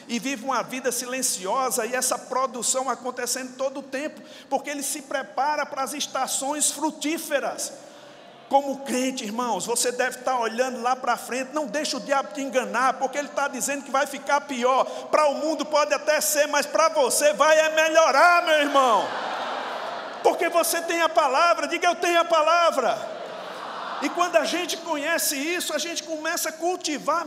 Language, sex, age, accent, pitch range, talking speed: Portuguese, male, 50-69, Brazilian, 275-330 Hz, 175 wpm